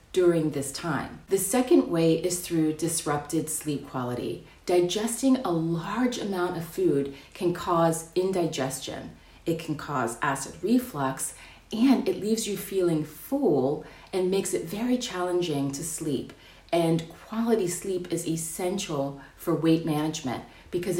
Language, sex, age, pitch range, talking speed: English, female, 30-49, 150-190 Hz, 135 wpm